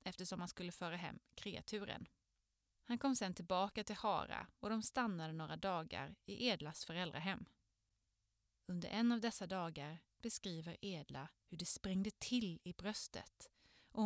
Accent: native